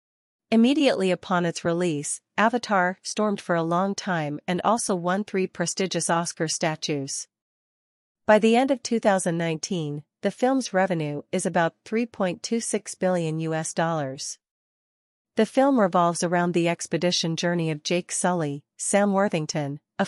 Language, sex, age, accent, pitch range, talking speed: English, female, 40-59, American, 165-200 Hz, 130 wpm